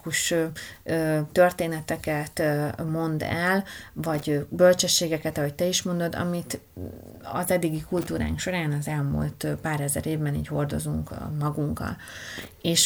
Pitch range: 145-180 Hz